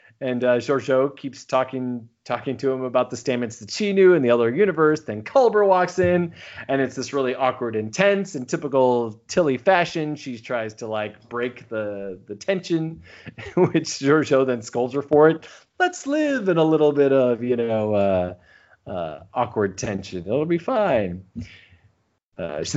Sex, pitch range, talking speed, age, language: male, 115-155 Hz, 170 wpm, 30-49, English